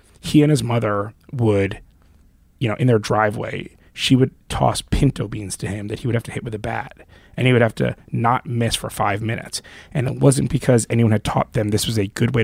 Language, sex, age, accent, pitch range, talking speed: English, male, 20-39, American, 100-125 Hz, 235 wpm